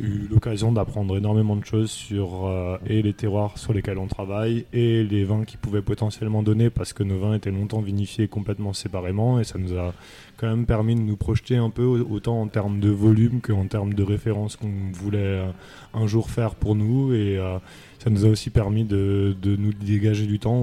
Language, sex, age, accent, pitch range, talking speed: French, male, 20-39, French, 100-115 Hz, 210 wpm